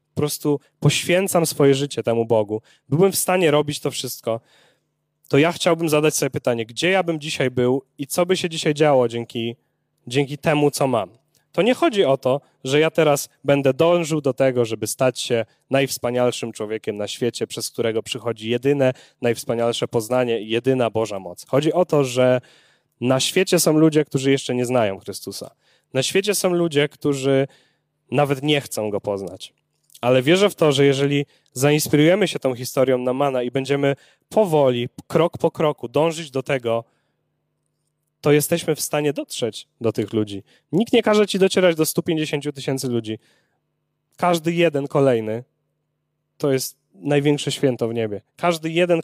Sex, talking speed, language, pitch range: male, 165 wpm, Polish, 125-160 Hz